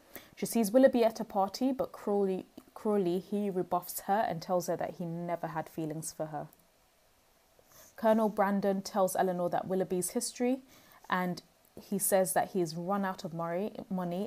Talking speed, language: 160 wpm, English